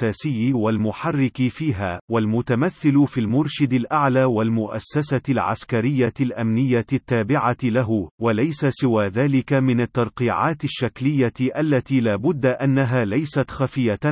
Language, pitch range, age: Arabic, 115-145 Hz, 40-59